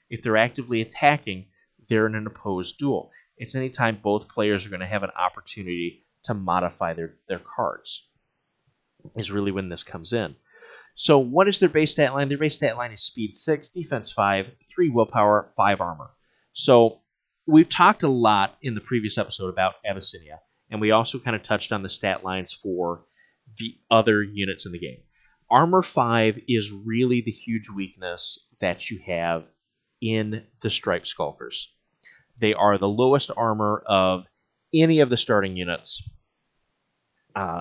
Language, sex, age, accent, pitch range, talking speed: English, male, 30-49, American, 100-125 Hz, 170 wpm